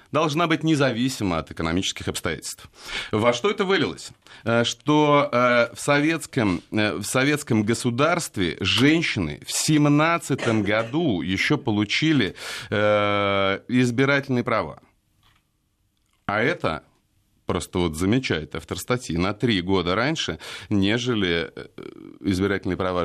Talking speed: 100 wpm